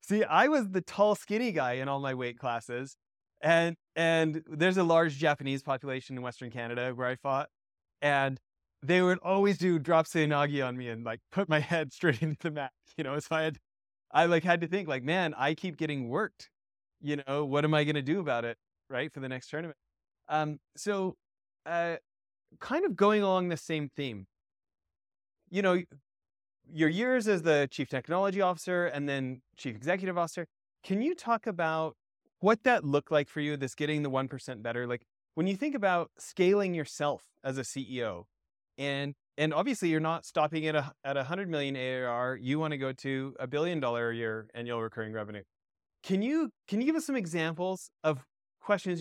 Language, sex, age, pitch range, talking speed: English, male, 30-49, 130-175 Hz, 190 wpm